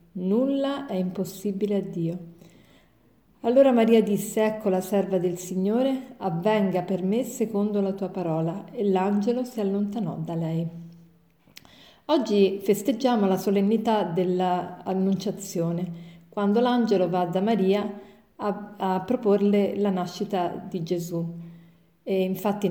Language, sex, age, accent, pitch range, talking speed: Italian, female, 40-59, native, 185-230 Hz, 120 wpm